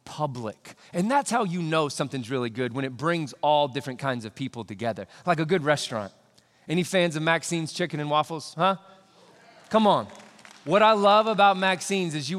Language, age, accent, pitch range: English, 30-49, American, 125-180 Hz